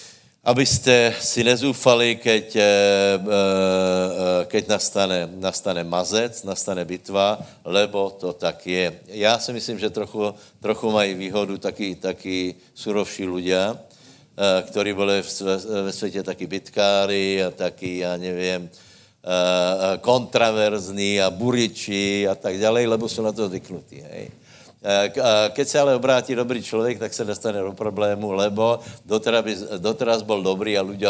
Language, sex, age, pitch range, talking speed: Slovak, male, 60-79, 95-115 Hz, 125 wpm